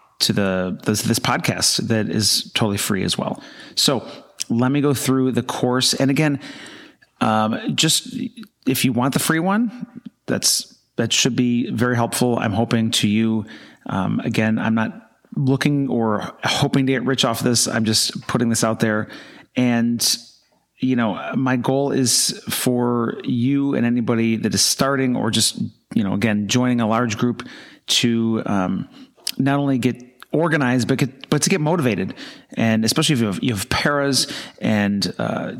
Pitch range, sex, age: 115-140 Hz, male, 30-49